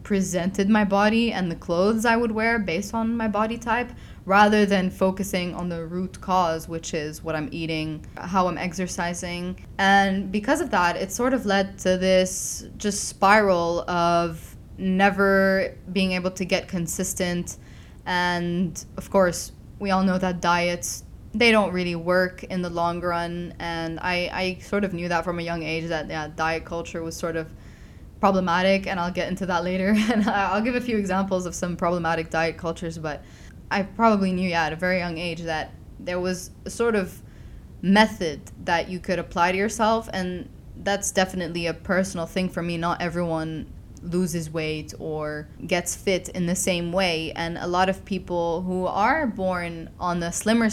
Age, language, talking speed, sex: 10-29, English, 180 wpm, female